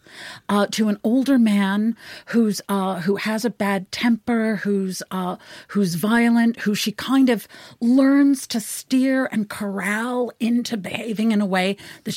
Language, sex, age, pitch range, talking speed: English, female, 40-59, 195-245 Hz, 155 wpm